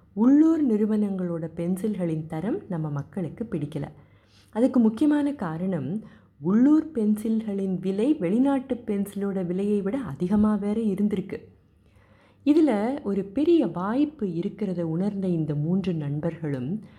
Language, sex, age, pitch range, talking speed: Tamil, female, 30-49, 155-220 Hz, 100 wpm